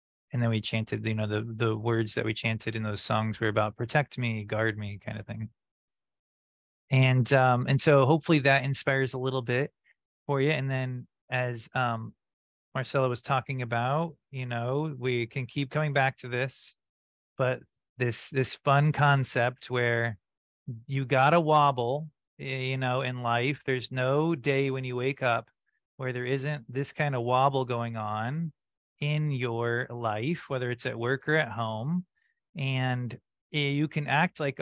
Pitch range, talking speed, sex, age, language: 120-150 Hz, 170 wpm, male, 30-49, English